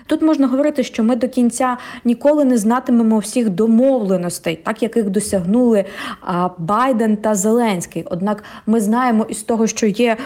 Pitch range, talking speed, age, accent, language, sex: 195-240 Hz, 150 wpm, 20-39, native, Ukrainian, female